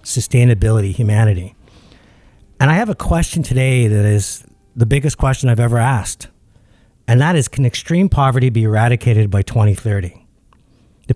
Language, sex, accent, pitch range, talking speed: English, male, American, 105-130 Hz, 145 wpm